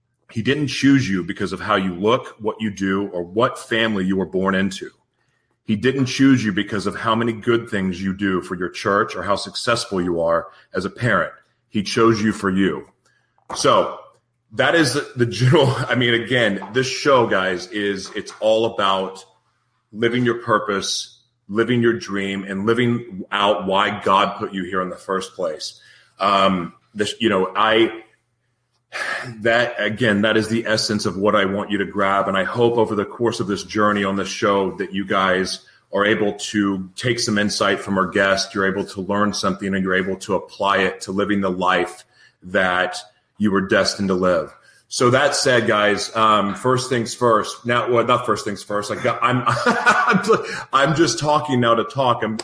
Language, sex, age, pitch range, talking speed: English, male, 30-49, 95-120 Hz, 190 wpm